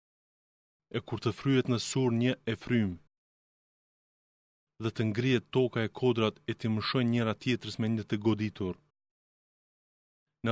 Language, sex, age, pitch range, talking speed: Greek, male, 20-39, 110-130 Hz, 135 wpm